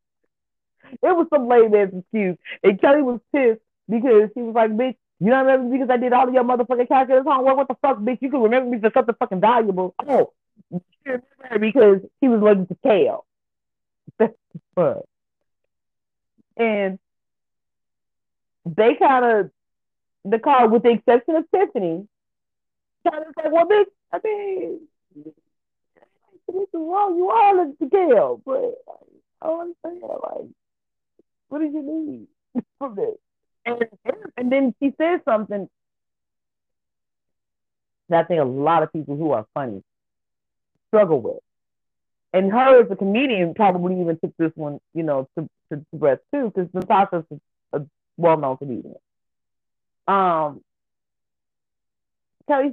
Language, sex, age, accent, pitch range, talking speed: English, female, 40-59, American, 180-280 Hz, 145 wpm